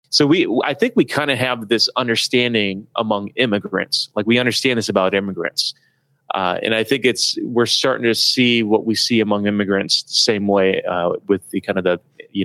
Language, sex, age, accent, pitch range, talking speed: English, male, 30-49, American, 100-120 Hz, 200 wpm